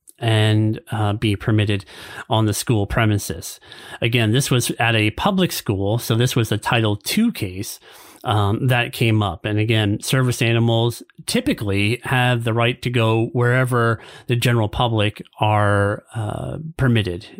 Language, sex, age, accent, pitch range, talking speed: English, male, 30-49, American, 105-130 Hz, 150 wpm